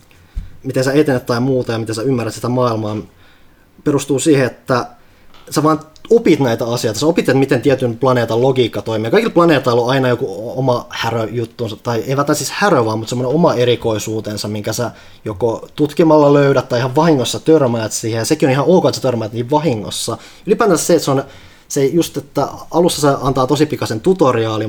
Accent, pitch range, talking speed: native, 110-150 Hz, 185 wpm